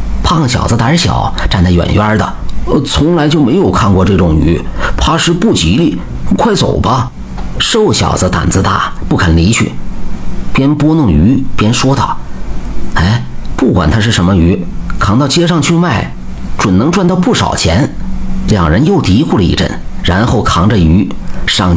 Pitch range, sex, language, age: 85-115 Hz, male, Chinese, 50-69